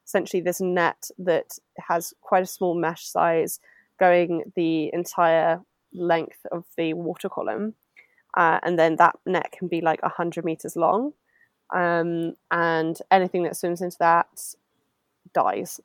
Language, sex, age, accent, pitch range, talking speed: English, female, 20-39, British, 165-190 Hz, 140 wpm